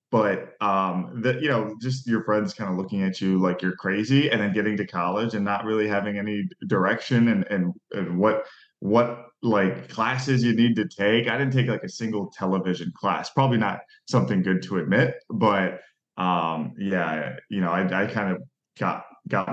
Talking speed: 195 wpm